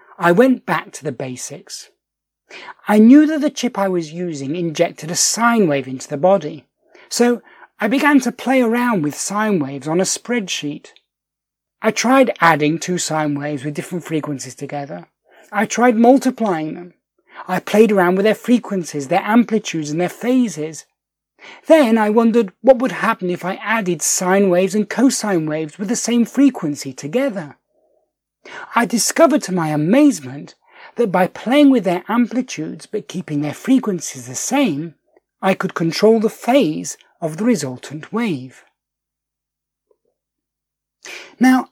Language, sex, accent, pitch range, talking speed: English, male, British, 160-245 Hz, 150 wpm